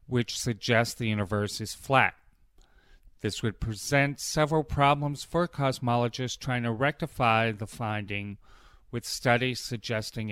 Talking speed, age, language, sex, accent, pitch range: 120 wpm, 30-49, English, male, American, 105-130 Hz